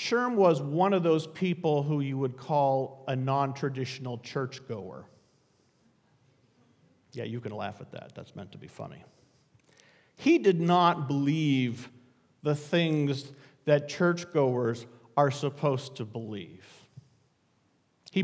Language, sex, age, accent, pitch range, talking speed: English, male, 50-69, American, 125-170 Hz, 125 wpm